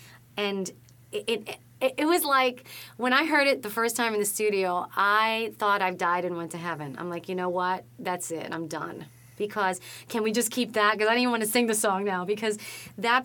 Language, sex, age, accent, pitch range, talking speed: English, female, 30-49, American, 185-255 Hz, 235 wpm